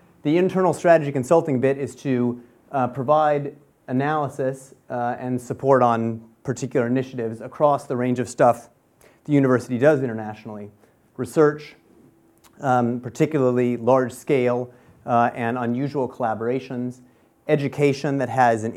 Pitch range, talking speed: 120-140 Hz, 120 wpm